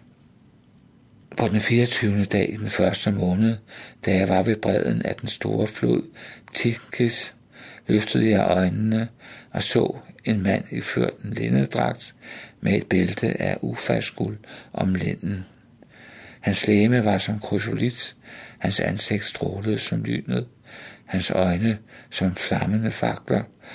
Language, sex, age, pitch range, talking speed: Danish, male, 60-79, 95-110 Hz, 125 wpm